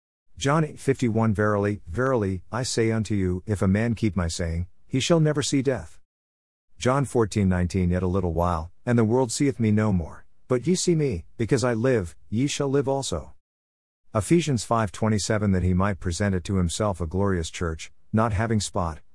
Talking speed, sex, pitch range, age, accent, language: 195 wpm, male, 90-120 Hz, 50-69, American, English